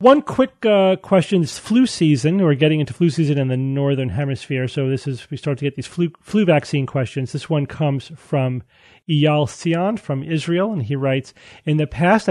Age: 30-49